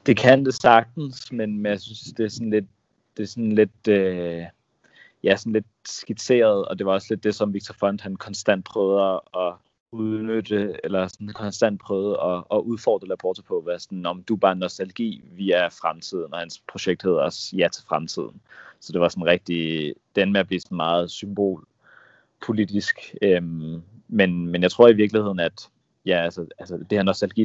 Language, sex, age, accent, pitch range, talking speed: Danish, male, 30-49, native, 90-105 Hz, 180 wpm